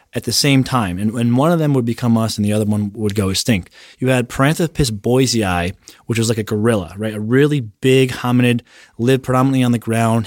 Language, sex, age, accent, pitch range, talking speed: English, male, 20-39, American, 115-135 Hz, 220 wpm